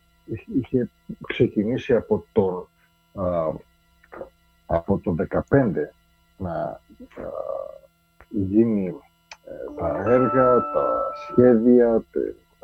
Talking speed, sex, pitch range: 55 wpm, male, 105-140 Hz